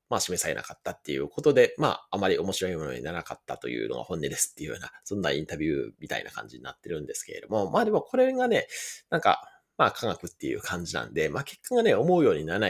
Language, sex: Japanese, male